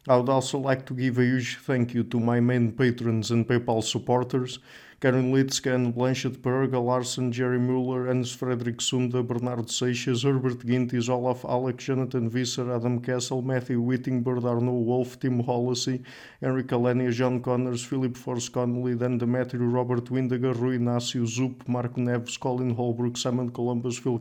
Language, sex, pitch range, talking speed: English, male, 120-130 Hz, 160 wpm